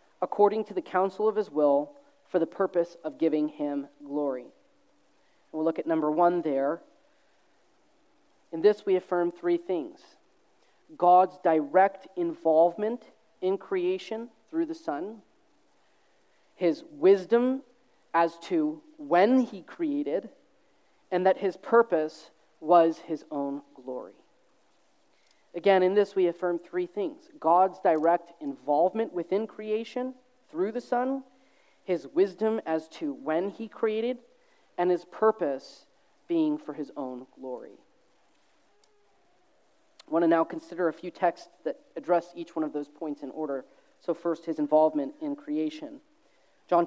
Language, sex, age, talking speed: English, male, 40-59, 130 wpm